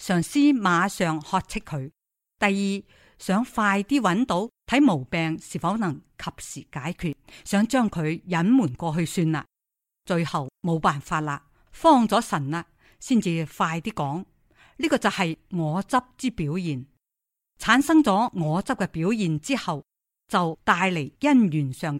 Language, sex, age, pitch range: Chinese, female, 50-69, 160-220 Hz